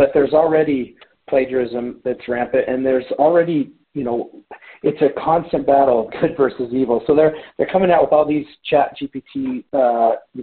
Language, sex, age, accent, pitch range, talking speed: English, male, 40-59, American, 125-150 Hz, 180 wpm